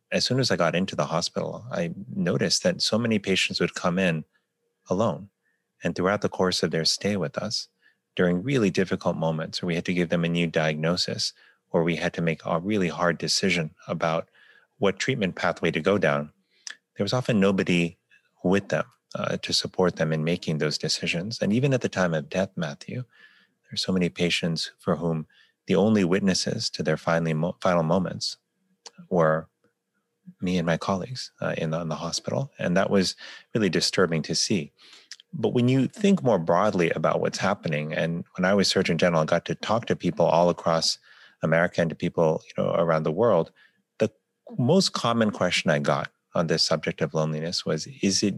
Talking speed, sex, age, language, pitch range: 190 wpm, male, 30-49, English, 80-105 Hz